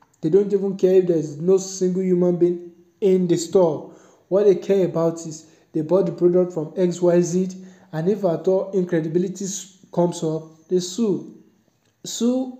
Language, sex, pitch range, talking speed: English, male, 160-185 Hz, 165 wpm